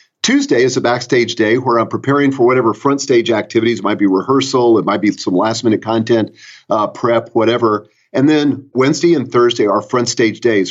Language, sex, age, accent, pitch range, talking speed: English, male, 40-59, American, 115-175 Hz, 195 wpm